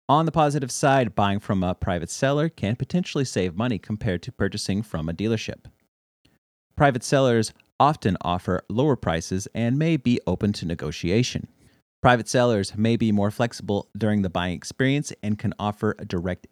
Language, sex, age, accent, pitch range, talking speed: English, male, 40-59, American, 95-130 Hz, 165 wpm